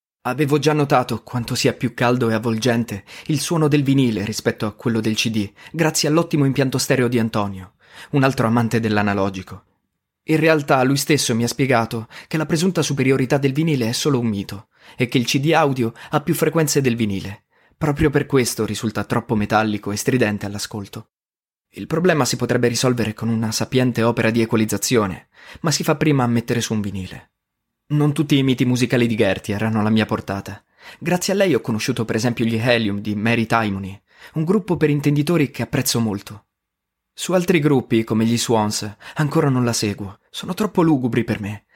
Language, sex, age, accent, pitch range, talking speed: Italian, male, 20-39, native, 110-145 Hz, 185 wpm